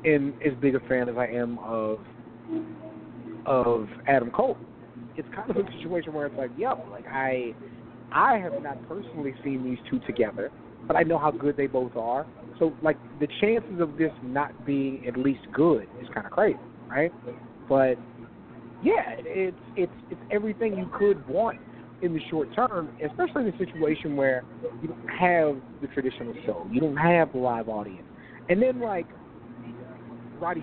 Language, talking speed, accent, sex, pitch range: English, 175 wpm, American, male, 120-165 Hz